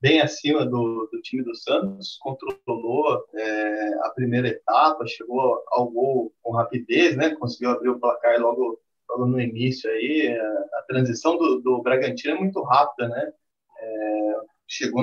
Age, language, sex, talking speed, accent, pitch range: 20-39, Portuguese, male, 155 wpm, Brazilian, 125-210 Hz